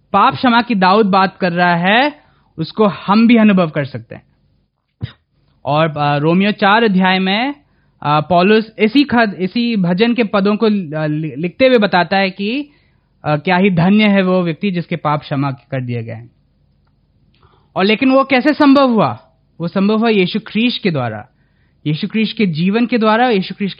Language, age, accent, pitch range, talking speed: Hindi, 20-39, native, 155-220 Hz, 160 wpm